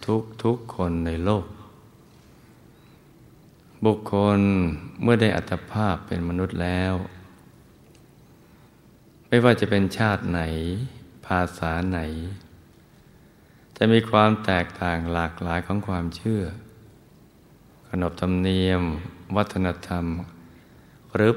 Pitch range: 85-105 Hz